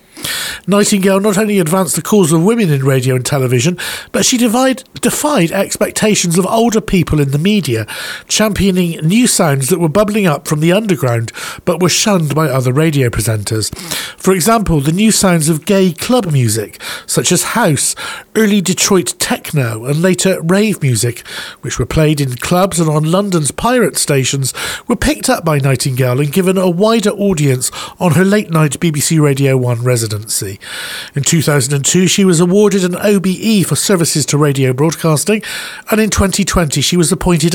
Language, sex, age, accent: English, male, 50-69, British